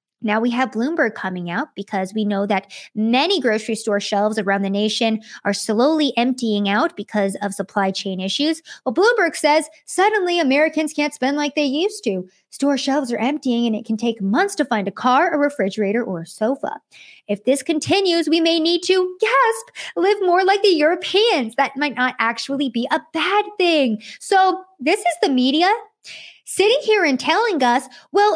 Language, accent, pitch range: English, American, 235-330 Hz